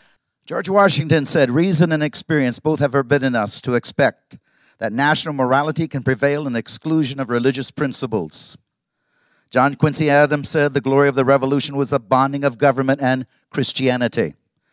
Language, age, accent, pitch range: English, 50-69, American, 140-190 Hz